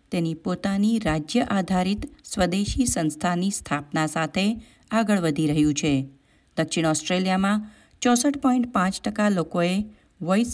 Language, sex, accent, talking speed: Gujarati, female, native, 95 wpm